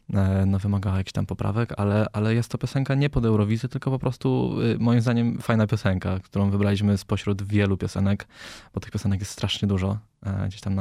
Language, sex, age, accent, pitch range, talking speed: Polish, male, 20-39, native, 100-125 Hz, 170 wpm